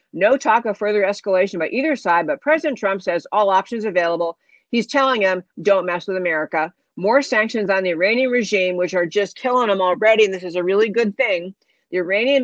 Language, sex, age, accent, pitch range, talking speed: English, female, 50-69, American, 185-230 Hz, 205 wpm